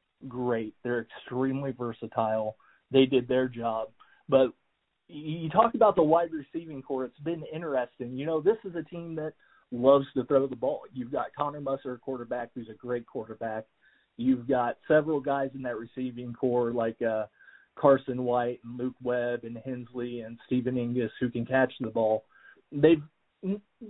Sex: male